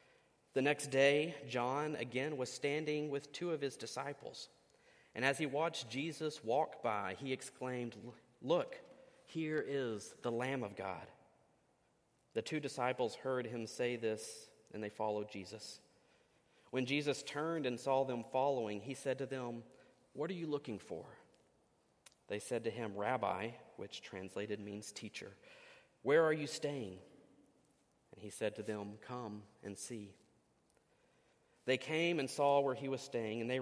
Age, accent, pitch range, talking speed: 40-59, American, 115-150 Hz, 155 wpm